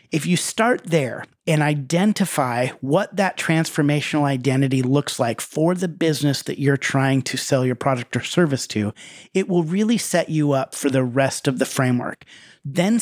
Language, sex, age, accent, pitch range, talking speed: English, male, 40-59, American, 135-175 Hz, 175 wpm